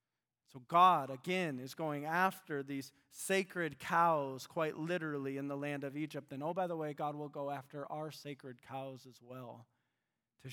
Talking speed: 175 wpm